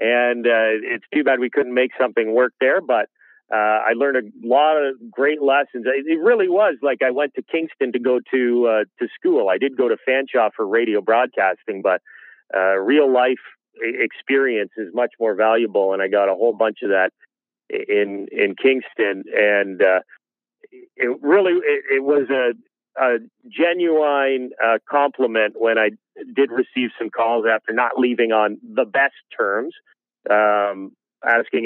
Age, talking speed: 40-59, 170 wpm